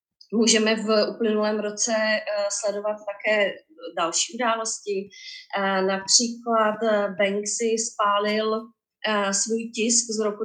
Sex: female